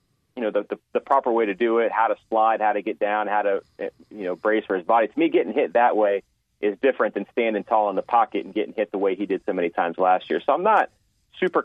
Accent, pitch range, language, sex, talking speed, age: American, 95-110 Hz, English, male, 285 wpm, 30-49